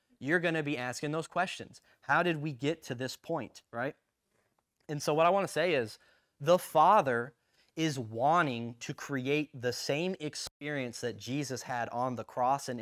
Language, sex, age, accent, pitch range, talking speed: English, male, 20-39, American, 120-165 Hz, 185 wpm